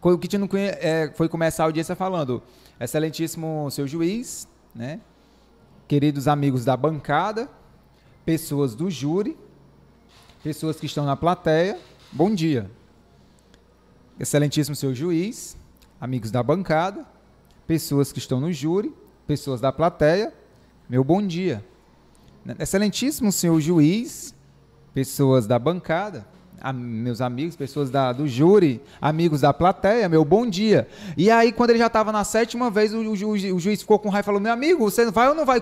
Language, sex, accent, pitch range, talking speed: Portuguese, male, Brazilian, 145-205 Hz, 145 wpm